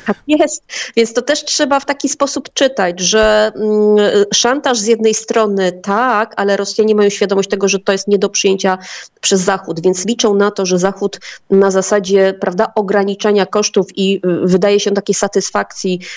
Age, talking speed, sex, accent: 30-49, 175 wpm, female, native